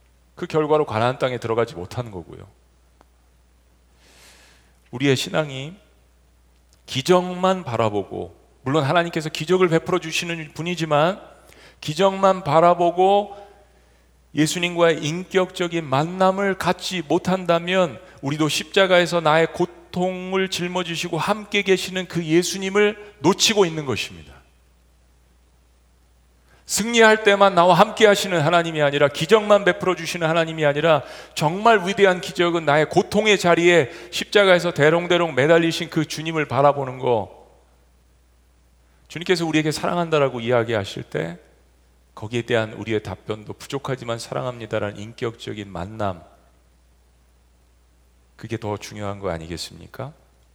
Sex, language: male, Korean